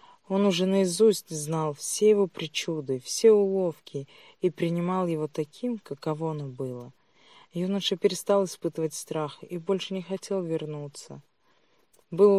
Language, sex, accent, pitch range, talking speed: Russian, female, native, 150-190 Hz, 125 wpm